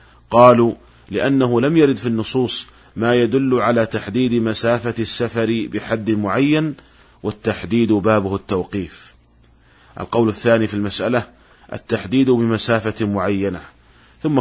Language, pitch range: Arabic, 105-125 Hz